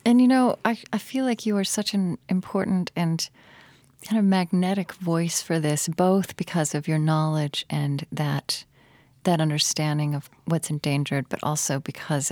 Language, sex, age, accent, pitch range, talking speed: English, female, 40-59, American, 145-185 Hz, 165 wpm